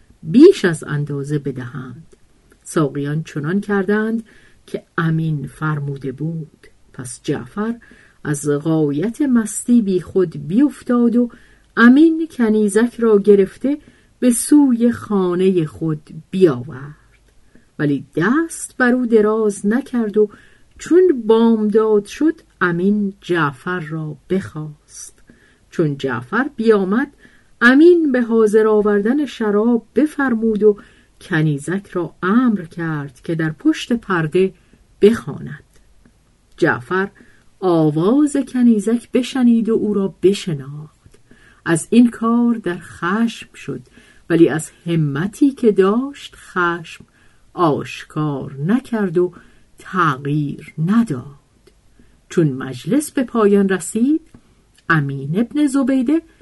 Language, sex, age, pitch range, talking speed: Persian, female, 50-69, 155-235 Hz, 100 wpm